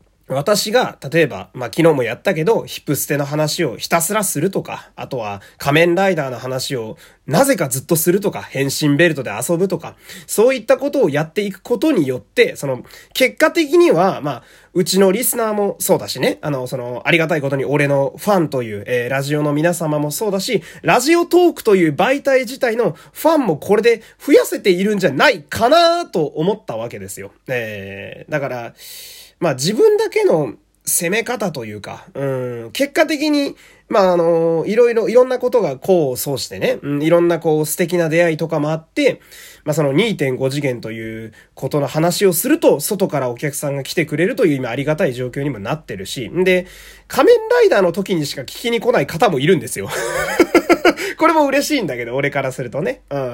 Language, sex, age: Japanese, male, 20-39